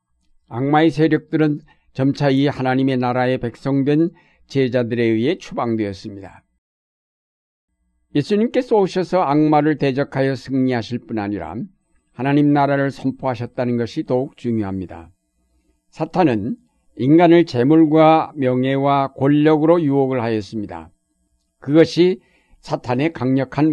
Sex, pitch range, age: male, 110-150 Hz, 60-79